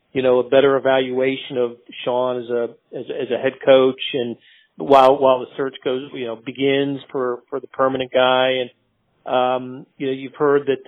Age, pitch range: 40-59, 130-155 Hz